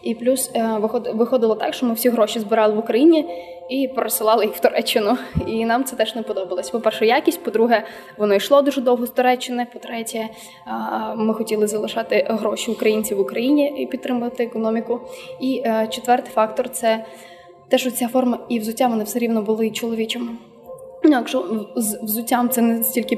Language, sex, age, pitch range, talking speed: Ukrainian, female, 20-39, 215-245 Hz, 165 wpm